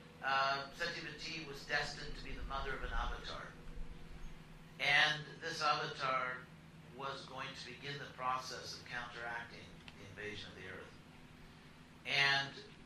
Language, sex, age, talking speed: English, male, 60-79, 125 wpm